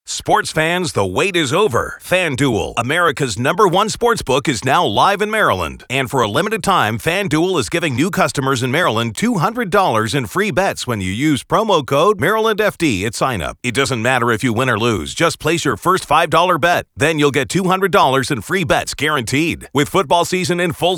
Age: 40-59